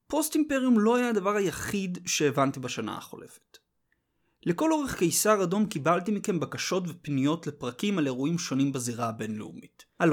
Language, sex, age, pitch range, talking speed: Hebrew, male, 30-49, 140-205 Hz, 140 wpm